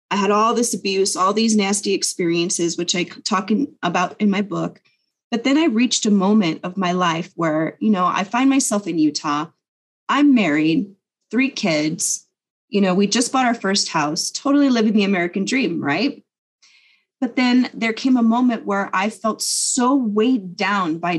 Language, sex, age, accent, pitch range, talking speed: English, female, 30-49, American, 190-245 Hz, 185 wpm